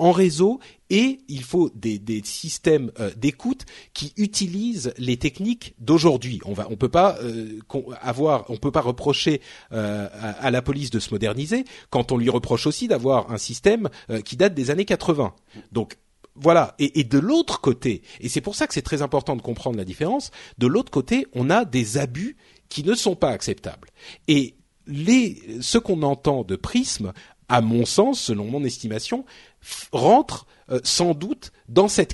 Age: 40-59